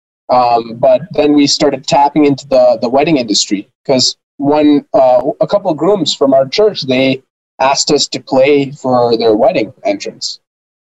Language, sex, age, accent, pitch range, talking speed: English, male, 20-39, American, 130-160 Hz, 165 wpm